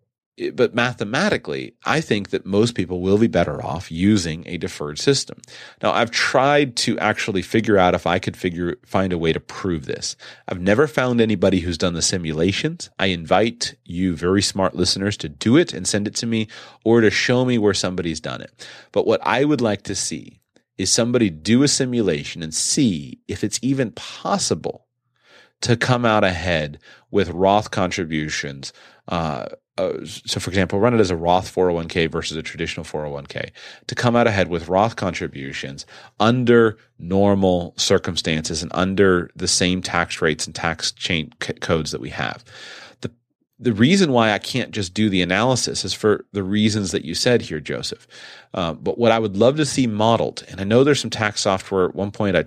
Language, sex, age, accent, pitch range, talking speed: English, male, 30-49, American, 90-115 Hz, 190 wpm